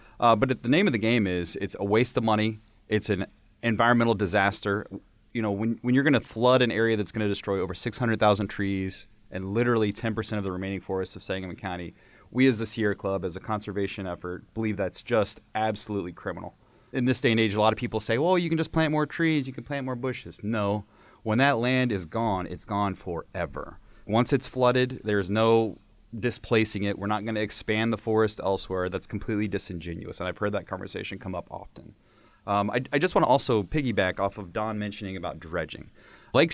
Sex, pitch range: male, 100-120 Hz